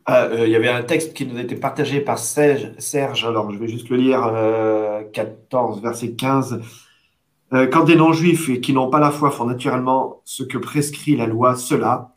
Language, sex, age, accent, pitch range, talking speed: French, male, 40-59, French, 115-150 Hz, 205 wpm